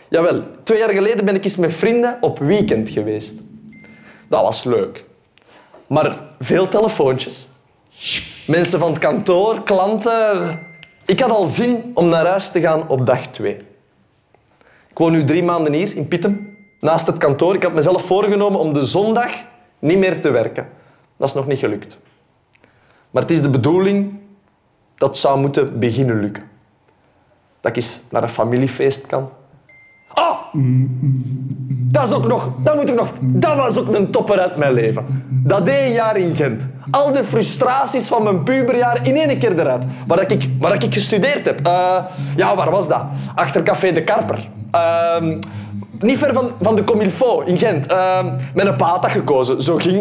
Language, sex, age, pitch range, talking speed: Dutch, male, 20-39, 135-205 Hz, 175 wpm